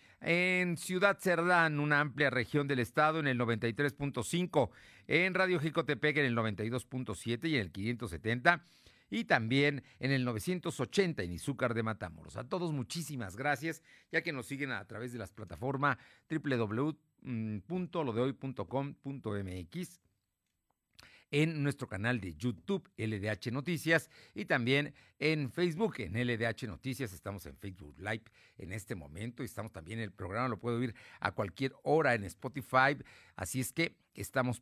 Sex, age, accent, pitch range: male, 50-69, Mexican, 115-160 Hz